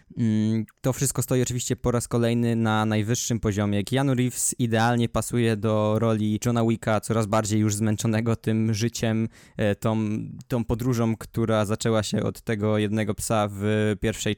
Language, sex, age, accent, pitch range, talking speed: Polish, male, 20-39, native, 110-125 Hz, 150 wpm